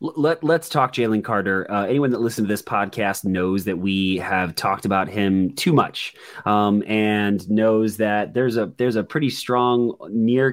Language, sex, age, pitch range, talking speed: English, male, 30-49, 100-125 Hz, 180 wpm